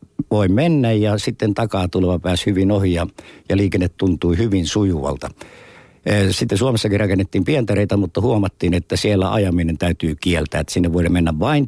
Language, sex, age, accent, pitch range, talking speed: Finnish, male, 60-79, native, 85-105 Hz, 160 wpm